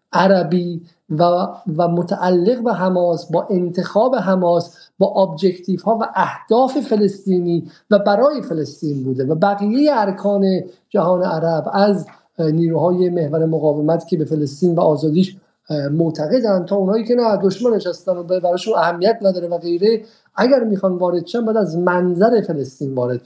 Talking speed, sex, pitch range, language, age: 140 wpm, male, 175-220 Hz, Persian, 50-69